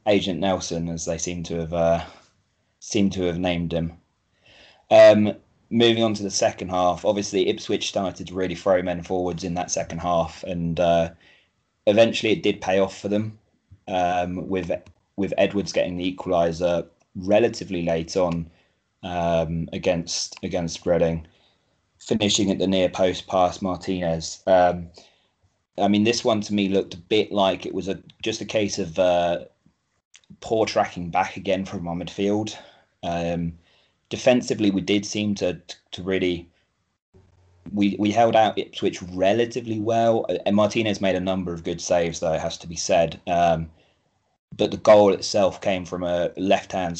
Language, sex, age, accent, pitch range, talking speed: English, male, 20-39, British, 85-100 Hz, 165 wpm